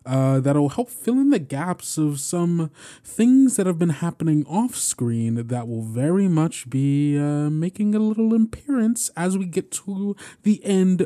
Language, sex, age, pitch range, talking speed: English, male, 20-39, 125-165 Hz, 175 wpm